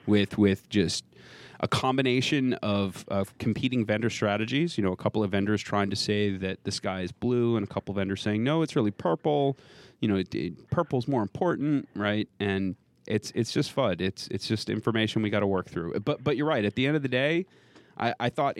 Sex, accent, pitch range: male, American, 100-130 Hz